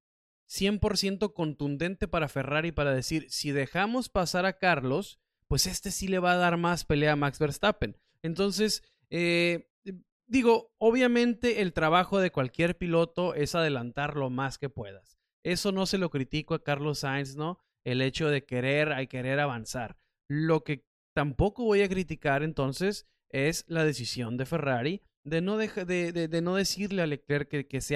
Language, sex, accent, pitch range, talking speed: Spanish, male, Mexican, 145-195 Hz, 170 wpm